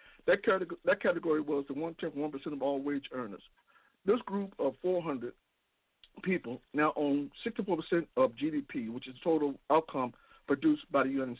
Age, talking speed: 60-79, 160 wpm